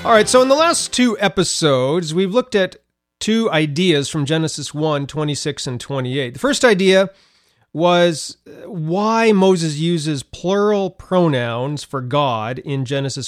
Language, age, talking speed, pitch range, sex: English, 30-49, 140 wpm, 140-190 Hz, male